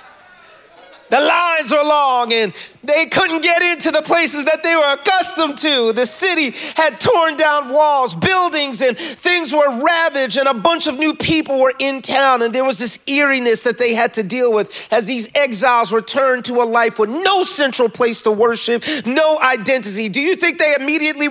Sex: male